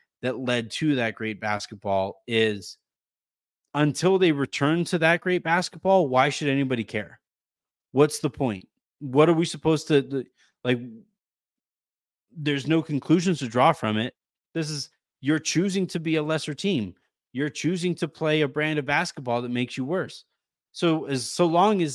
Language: English